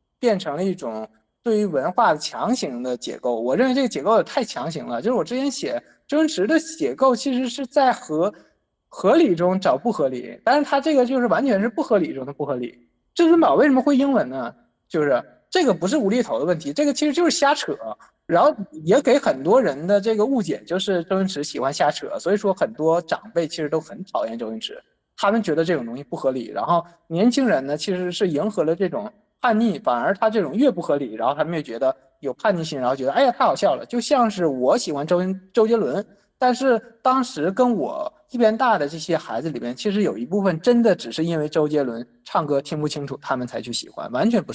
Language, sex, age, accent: Chinese, male, 20-39, native